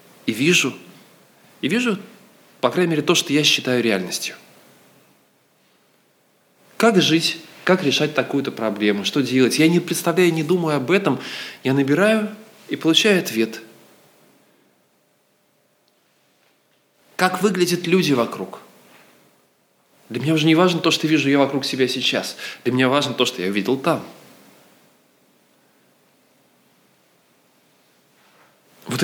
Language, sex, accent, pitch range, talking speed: Russian, male, native, 125-170 Hz, 120 wpm